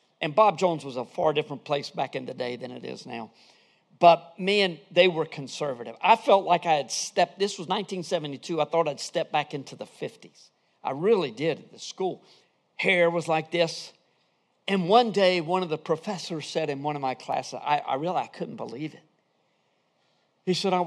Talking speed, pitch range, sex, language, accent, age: 200 wpm, 145-195 Hz, male, English, American, 50-69